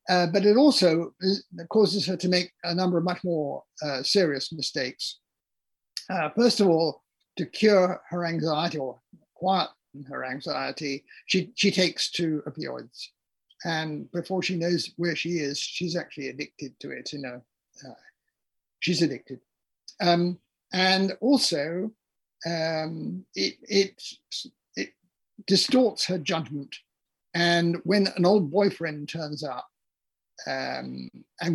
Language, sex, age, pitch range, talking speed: English, male, 50-69, 155-190 Hz, 130 wpm